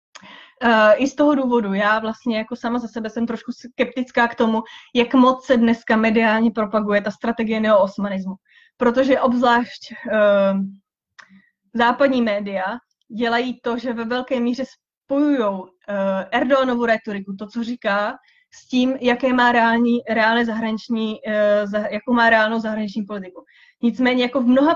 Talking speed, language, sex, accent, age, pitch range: 135 wpm, Czech, female, native, 20-39, 215-255 Hz